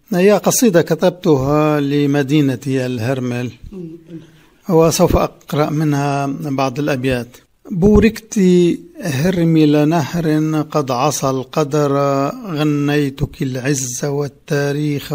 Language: Arabic